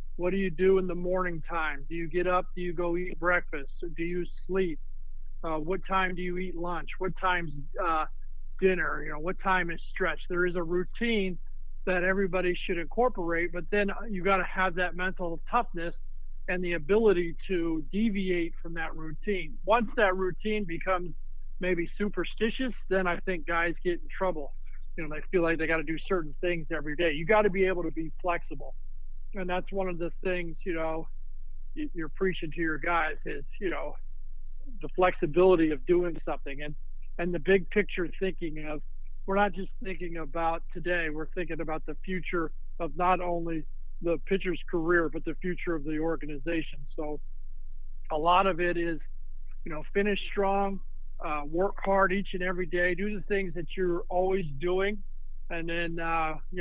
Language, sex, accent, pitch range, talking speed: English, male, American, 160-190 Hz, 180 wpm